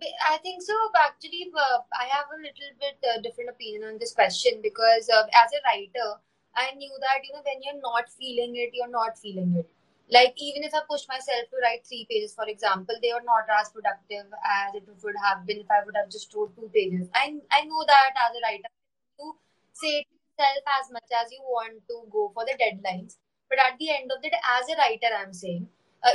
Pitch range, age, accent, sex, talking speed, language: 220-280 Hz, 20-39, Indian, female, 225 wpm, English